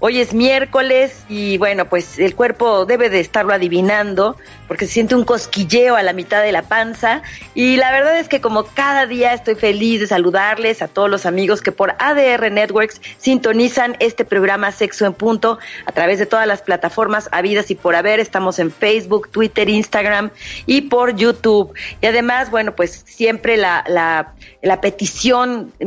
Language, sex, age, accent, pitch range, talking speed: Spanish, female, 40-59, Mexican, 195-240 Hz, 175 wpm